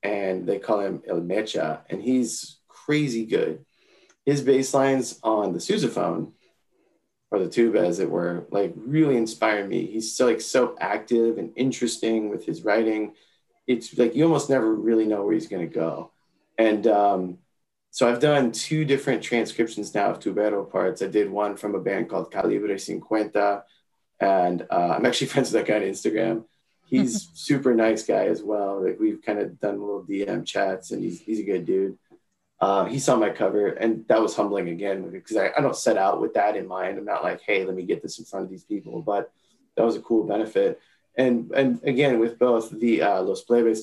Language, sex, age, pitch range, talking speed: English, male, 20-39, 105-130 Hz, 200 wpm